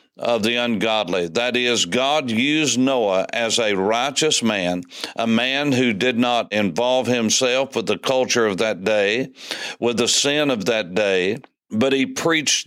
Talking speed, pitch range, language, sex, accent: 160 wpm, 115-135 Hz, English, male, American